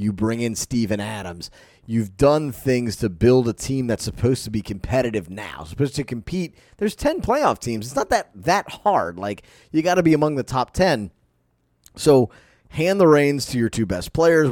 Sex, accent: male, American